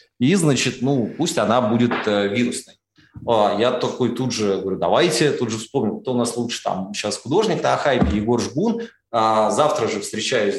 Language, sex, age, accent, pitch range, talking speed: Russian, male, 20-39, native, 110-140 Hz, 185 wpm